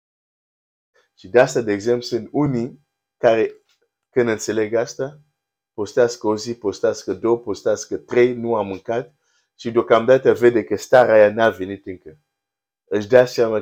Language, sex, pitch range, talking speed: Romanian, male, 100-130 Hz, 145 wpm